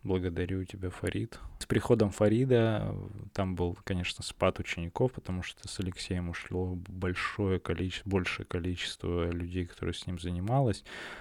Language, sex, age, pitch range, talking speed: Russian, male, 20-39, 90-105 Hz, 135 wpm